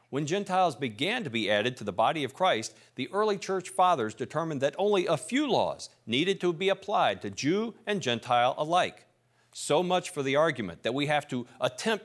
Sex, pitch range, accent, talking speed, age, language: male, 120-180 Hz, American, 200 wpm, 50-69, English